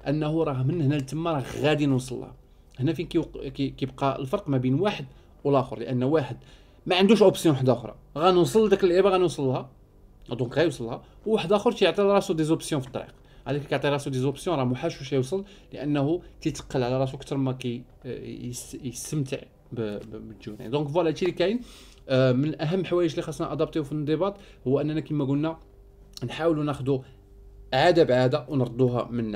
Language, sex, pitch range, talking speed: Arabic, male, 120-160 Hz, 170 wpm